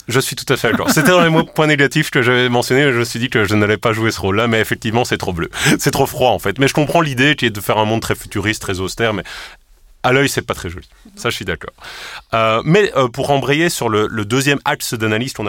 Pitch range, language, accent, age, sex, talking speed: 95-130 Hz, French, French, 30-49, male, 285 wpm